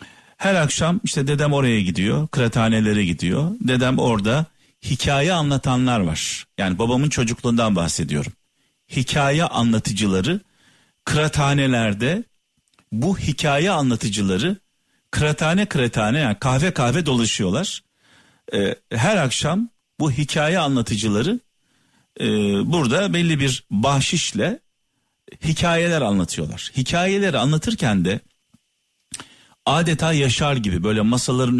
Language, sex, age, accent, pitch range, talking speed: Turkish, male, 50-69, native, 115-165 Hz, 90 wpm